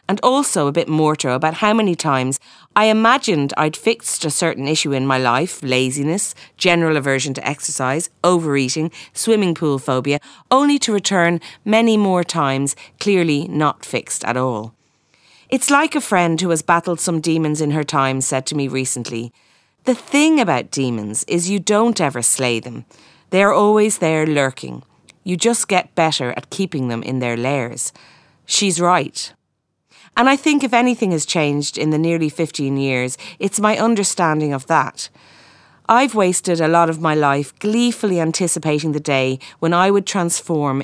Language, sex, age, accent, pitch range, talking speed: English, female, 30-49, Irish, 140-195 Hz, 165 wpm